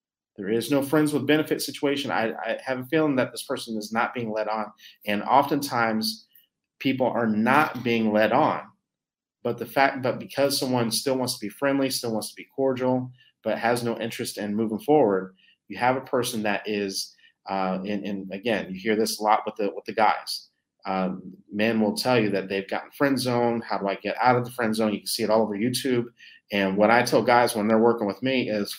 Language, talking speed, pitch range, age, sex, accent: English, 225 wpm, 110-145 Hz, 30-49, male, American